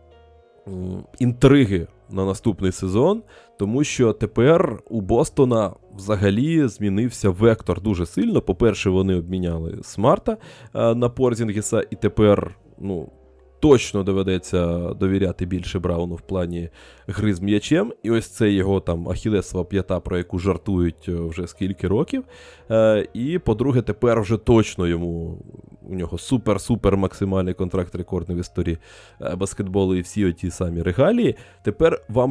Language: Ukrainian